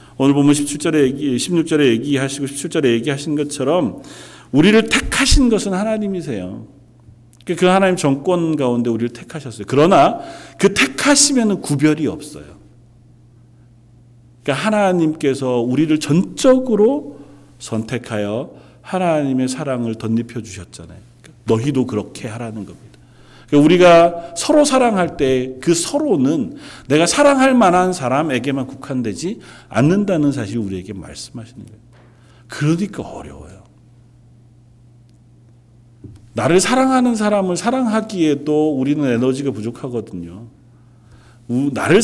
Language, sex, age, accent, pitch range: Korean, male, 40-59, native, 120-175 Hz